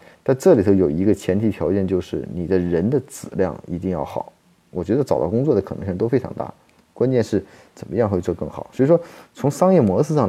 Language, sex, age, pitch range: Chinese, male, 30-49, 95-120 Hz